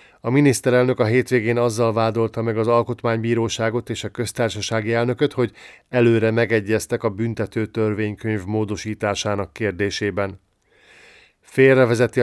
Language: Hungarian